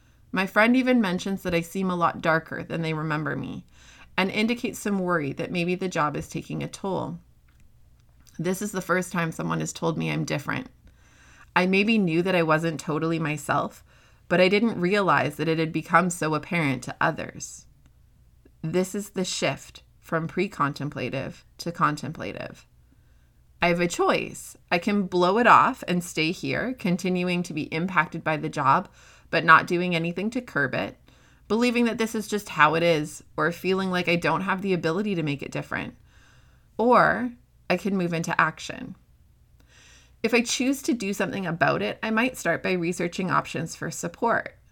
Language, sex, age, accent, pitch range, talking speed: English, female, 30-49, American, 160-195 Hz, 180 wpm